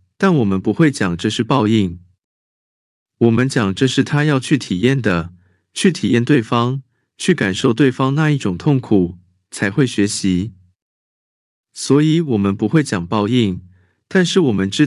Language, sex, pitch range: Chinese, male, 95-145 Hz